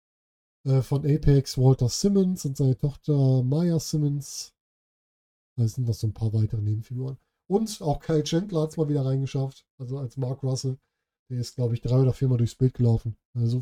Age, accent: 10-29, German